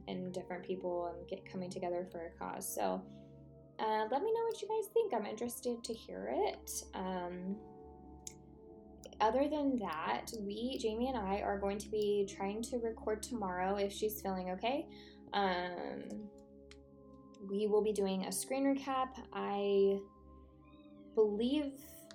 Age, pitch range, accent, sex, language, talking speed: 10-29, 170-215 Hz, American, female, English, 145 wpm